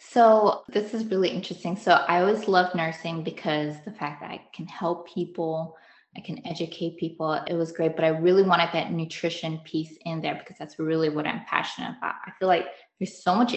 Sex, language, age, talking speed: female, English, 20-39, 210 wpm